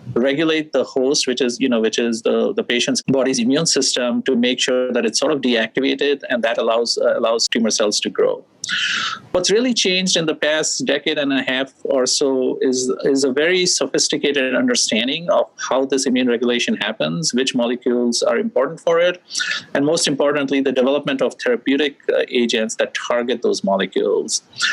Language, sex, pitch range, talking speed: English, male, 125-200 Hz, 180 wpm